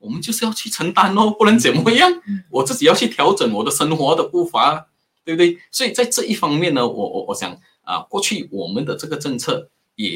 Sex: male